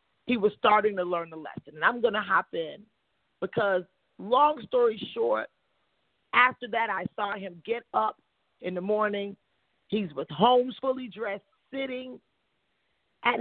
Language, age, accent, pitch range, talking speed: English, 40-59, American, 195-245 Hz, 150 wpm